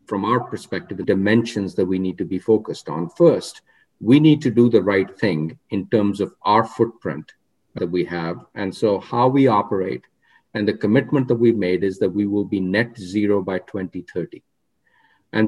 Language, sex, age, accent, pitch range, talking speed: English, male, 50-69, Indian, 100-125 Hz, 190 wpm